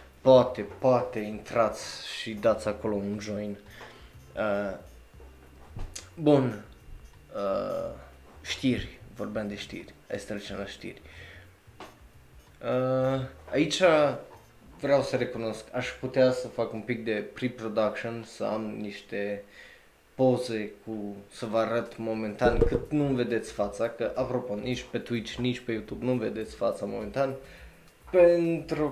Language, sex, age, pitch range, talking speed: Romanian, male, 20-39, 105-125 Hz, 120 wpm